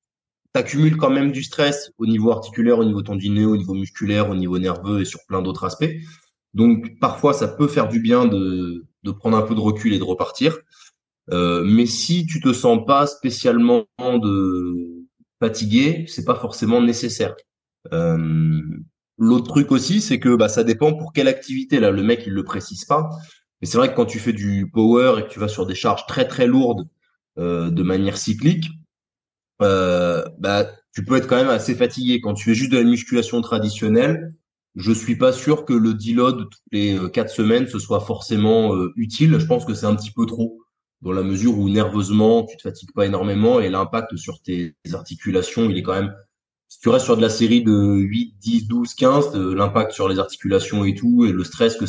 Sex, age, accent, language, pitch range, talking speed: male, 20-39, French, French, 100-135 Hz, 210 wpm